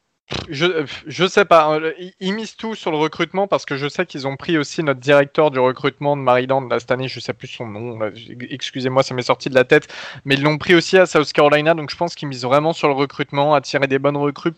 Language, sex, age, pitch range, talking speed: French, male, 20-39, 135-165 Hz, 260 wpm